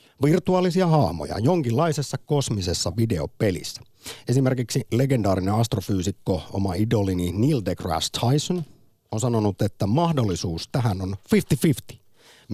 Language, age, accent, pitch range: Finnish, 50-69, native, 95-135 Hz